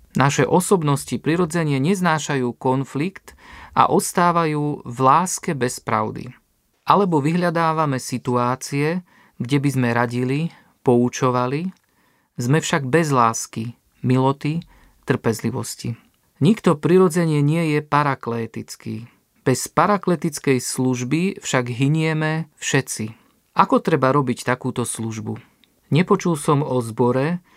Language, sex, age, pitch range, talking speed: Slovak, male, 40-59, 125-160 Hz, 100 wpm